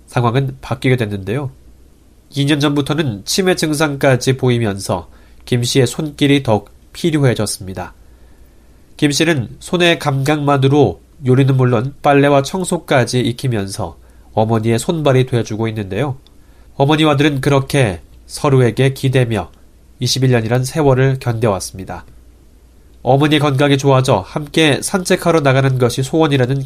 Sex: male